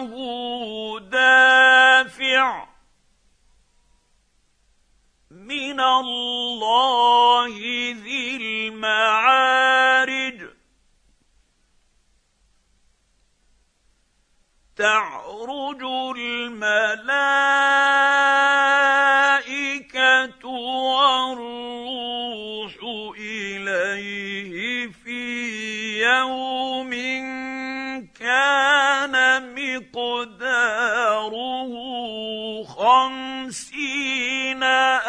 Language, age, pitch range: Arabic, 50-69, 210-260 Hz